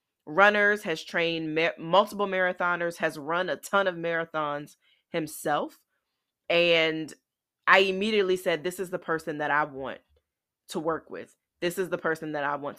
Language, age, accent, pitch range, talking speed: English, 20-39, American, 155-195 Hz, 155 wpm